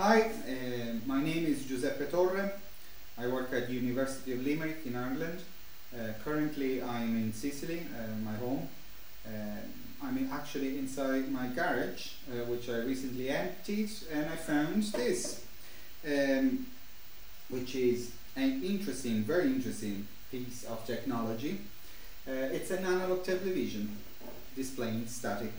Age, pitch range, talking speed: 30-49, 115-155 Hz, 125 wpm